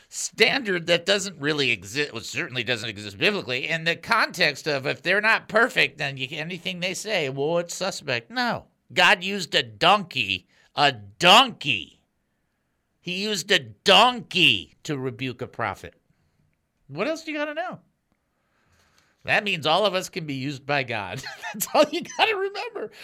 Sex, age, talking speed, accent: male, 50-69, 160 wpm, American